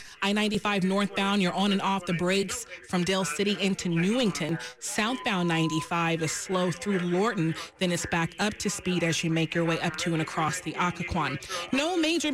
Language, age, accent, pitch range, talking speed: English, 30-49, American, 170-200 Hz, 185 wpm